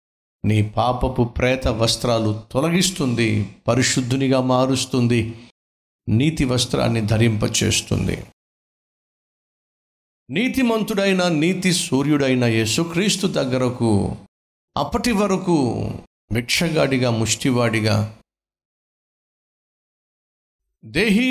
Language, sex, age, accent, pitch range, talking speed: Telugu, male, 50-69, native, 110-140 Hz, 55 wpm